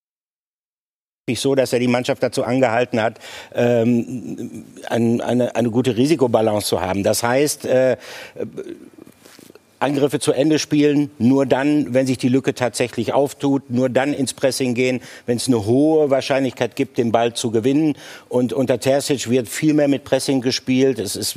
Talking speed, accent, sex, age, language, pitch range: 160 wpm, German, male, 60-79, German, 115-135 Hz